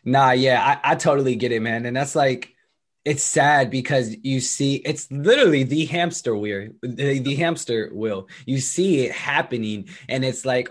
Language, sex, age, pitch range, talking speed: English, male, 20-39, 120-155 Hz, 180 wpm